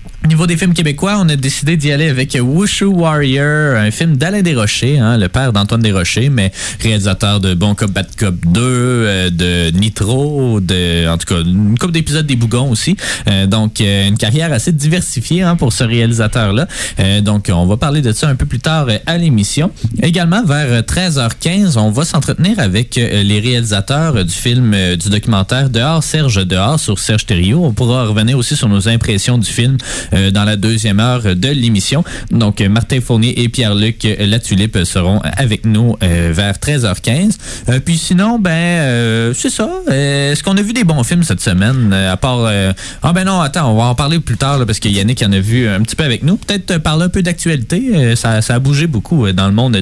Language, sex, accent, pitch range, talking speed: French, male, Canadian, 105-150 Hz, 195 wpm